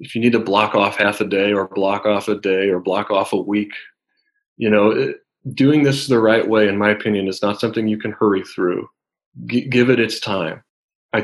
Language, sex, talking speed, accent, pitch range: English, male, 220 wpm, American, 105-130 Hz